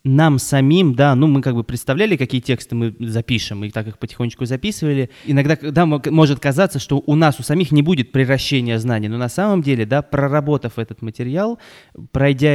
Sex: male